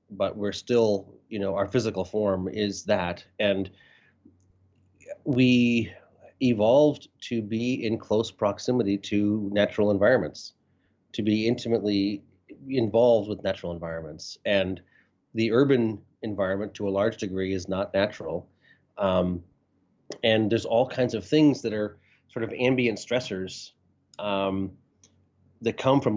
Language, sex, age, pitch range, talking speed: English, male, 30-49, 95-115 Hz, 130 wpm